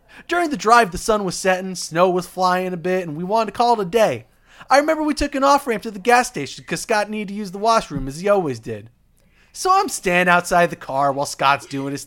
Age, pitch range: 30-49, 170-245 Hz